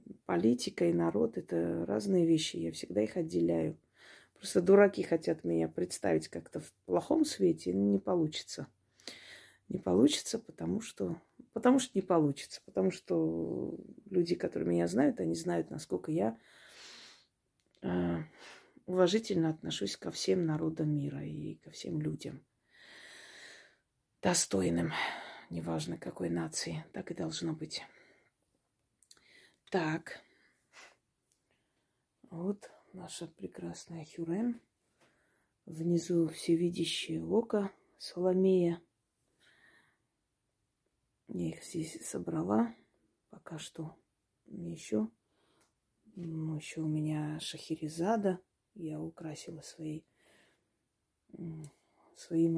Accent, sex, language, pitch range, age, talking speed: native, female, Russian, 110-175 Hz, 30-49, 95 wpm